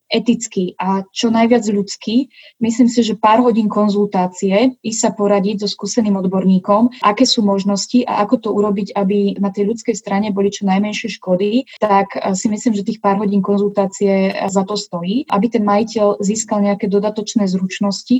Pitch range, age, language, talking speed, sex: 200-225 Hz, 20-39, Slovak, 165 wpm, female